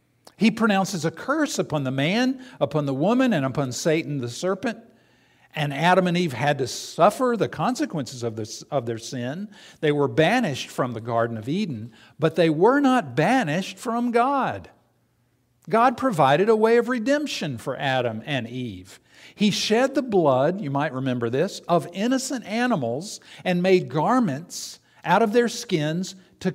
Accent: American